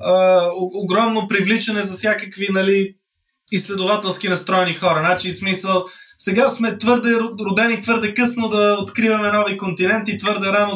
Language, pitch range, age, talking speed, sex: Bulgarian, 190-235 Hz, 20-39, 135 wpm, male